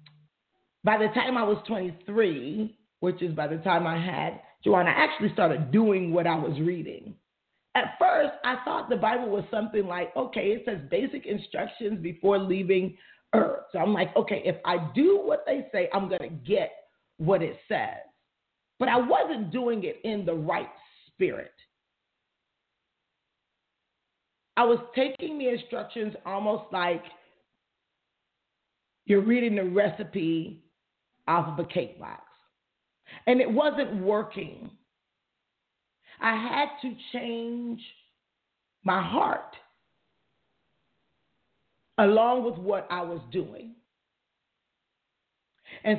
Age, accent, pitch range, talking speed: 40-59, American, 175-240 Hz, 130 wpm